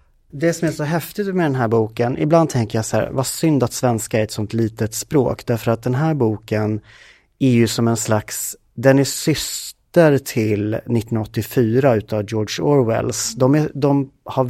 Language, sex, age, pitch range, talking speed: Swedish, male, 30-49, 110-135 Hz, 185 wpm